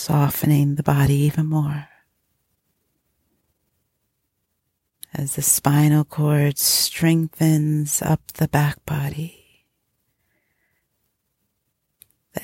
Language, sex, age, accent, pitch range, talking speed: English, female, 40-59, American, 150-165 Hz, 70 wpm